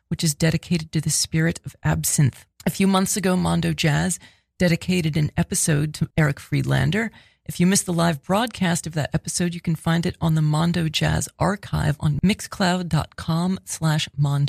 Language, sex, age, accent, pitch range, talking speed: English, female, 30-49, American, 150-180 Hz, 165 wpm